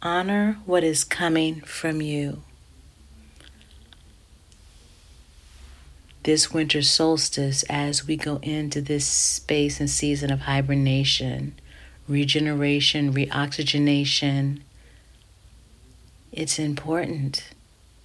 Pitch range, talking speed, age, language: 105-155 Hz, 75 wpm, 40-59, English